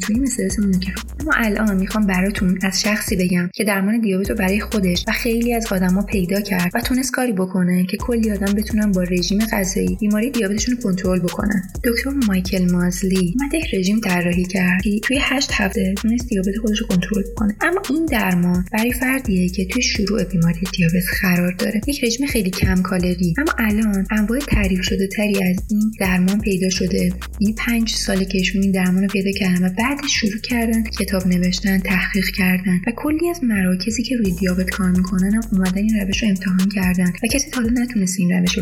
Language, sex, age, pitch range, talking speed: Persian, female, 20-39, 185-225 Hz, 190 wpm